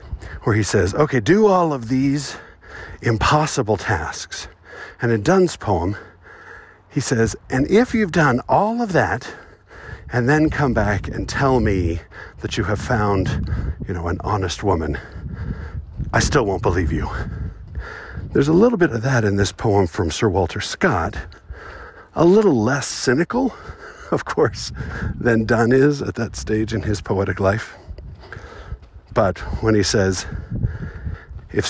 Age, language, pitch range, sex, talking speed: 50-69, English, 95-125 Hz, male, 150 wpm